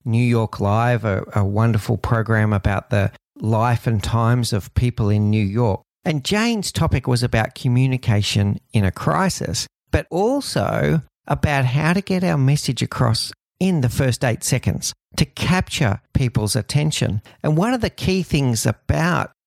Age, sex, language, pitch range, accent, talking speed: 50-69, male, English, 115-155 Hz, Australian, 155 wpm